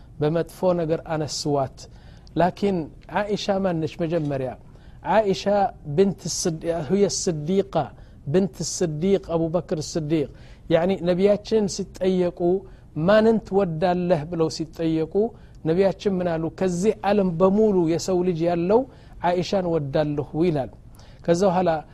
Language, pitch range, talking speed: Amharic, 160-200 Hz, 105 wpm